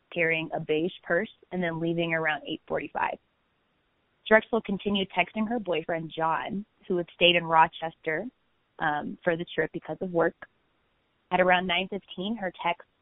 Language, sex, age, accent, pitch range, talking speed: English, female, 20-39, American, 160-180 Hz, 145 wpm